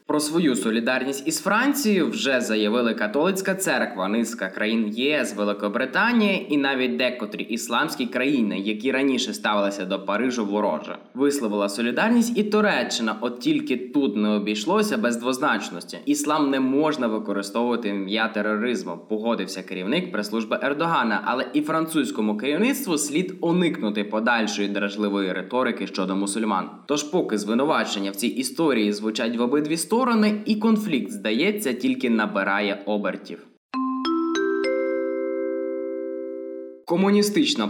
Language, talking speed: Ukrainian, 115 wpm